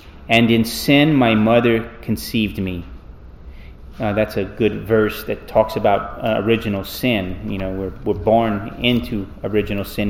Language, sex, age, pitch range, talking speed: English, male, 30-49, 95-125 Hz, 155 wpm